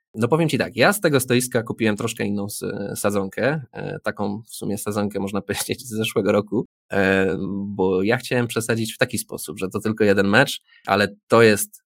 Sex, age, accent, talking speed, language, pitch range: male, 20-39, native, 180 wpm, Polish, 100-115 Hz